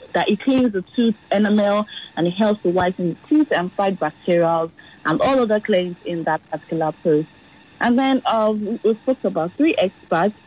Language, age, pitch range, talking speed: English, 30-49, 170-220 Hz, 185 wpm